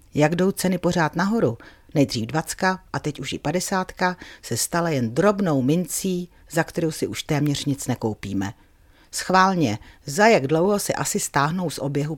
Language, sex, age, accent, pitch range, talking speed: Czech, female, 40-59, native, 130-185 Hz, 165 wpm